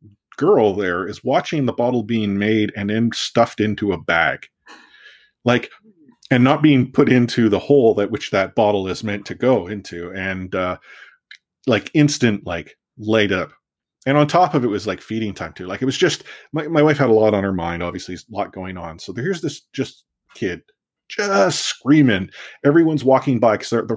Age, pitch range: 30-49, 90-120 Hz